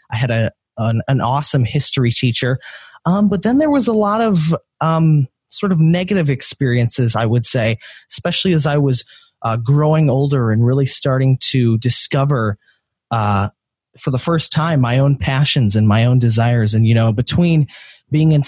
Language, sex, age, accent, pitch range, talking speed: English, male, 20-39, American, 125-155 Hz, 175 wpm